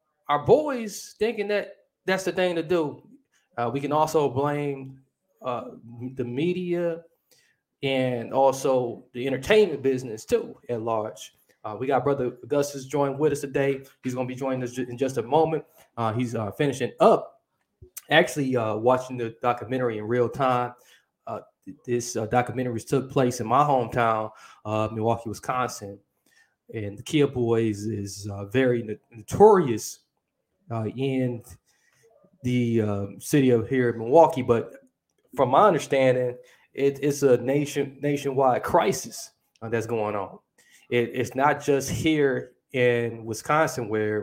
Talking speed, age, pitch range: 150 wpm, 20-39, 115-140 Hz